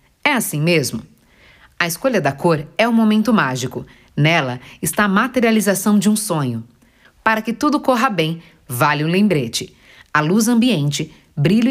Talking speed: 155 wpm